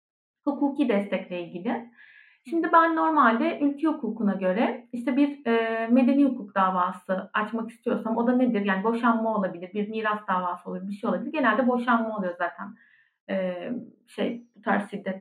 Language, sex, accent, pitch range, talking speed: Turkish, female, native, 225-300 Hz, 155 wpm